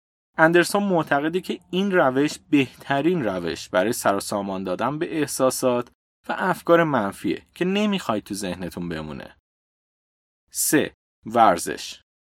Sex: male